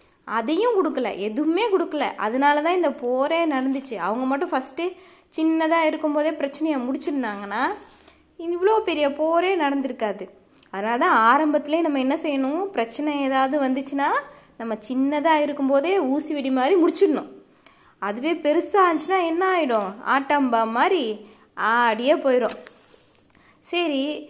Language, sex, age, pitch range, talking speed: Tamil, female, 20-39, 250-335 Hz, 105 wpm